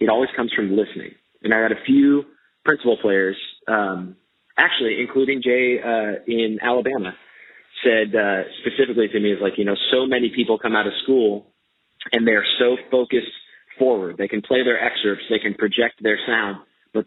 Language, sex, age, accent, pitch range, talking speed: English, male, 30-49, American, 100-125 Hz, 180 wpm